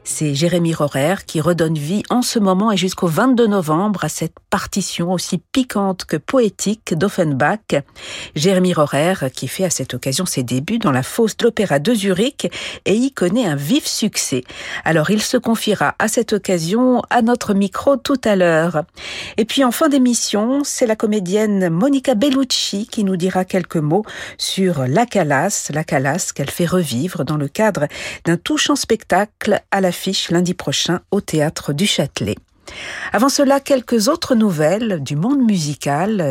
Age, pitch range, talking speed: 50-69, 155-225 Hz, 165 wpm